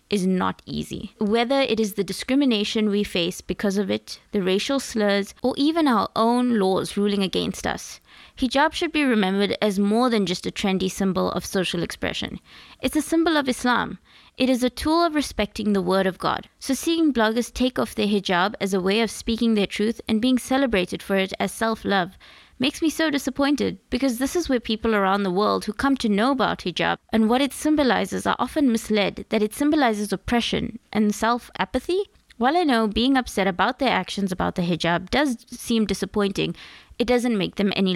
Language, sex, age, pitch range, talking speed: English, female, 20-39, 195-250 Hz, 195 wpm